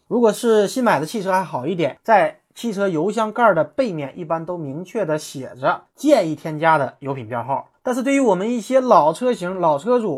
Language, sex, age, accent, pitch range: Chinese, male, 20-39, native, 155-235 Hz